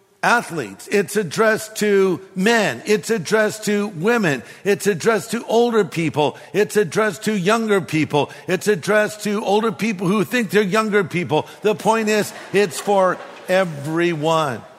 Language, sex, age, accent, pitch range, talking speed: English, male, 50-69, American, 155-205 Hz, 170 wpm